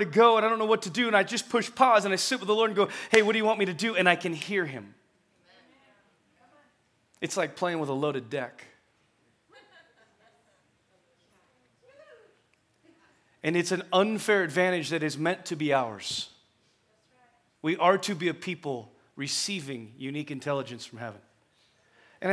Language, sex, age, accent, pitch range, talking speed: English, male, 30-49, American, 145-210 Hz, 175 wpm